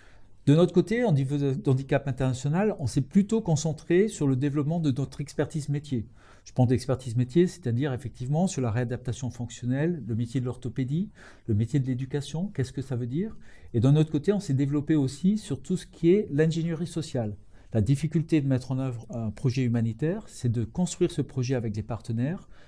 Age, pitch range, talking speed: 50-69, 125-160 Hz, 195 wpm